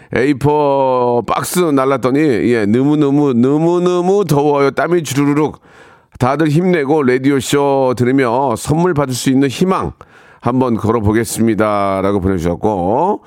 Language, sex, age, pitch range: Korean, male, 40-59, 115-150 Hz